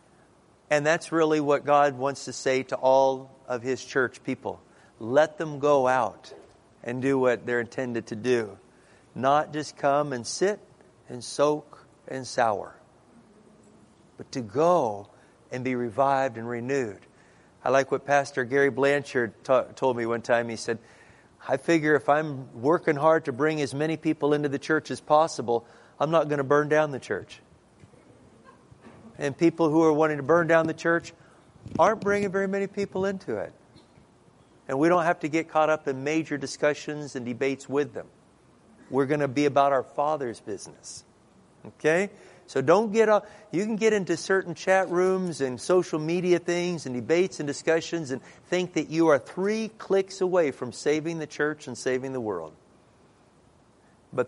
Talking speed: 170 wpm